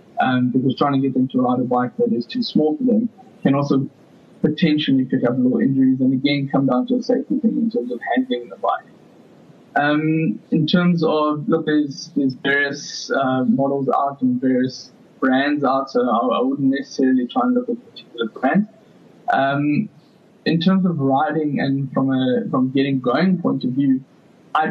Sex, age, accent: male, 20-39, South African